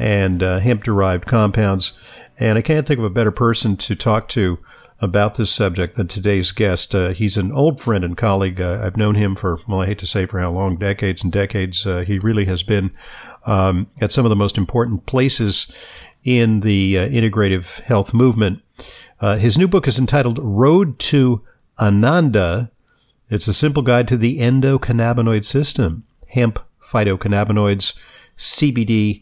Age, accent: 50-69, American